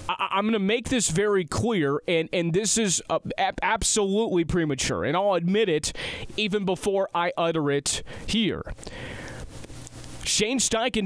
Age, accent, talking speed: 30-49, American, 150 wpm